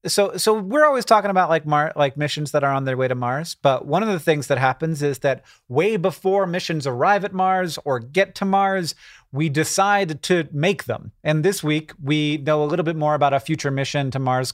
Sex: male